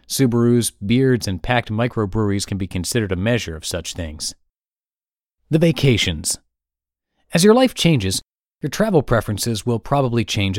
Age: 30-49